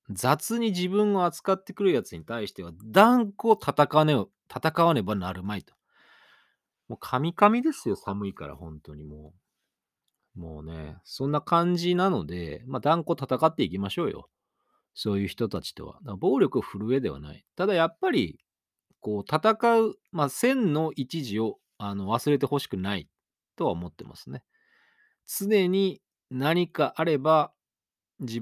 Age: 40-59